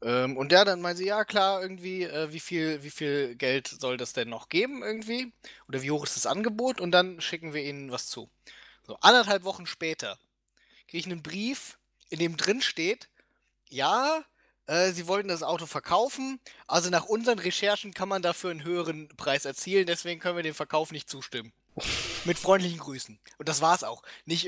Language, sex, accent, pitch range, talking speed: German, male, German, 140-185 Hz, 190 wpm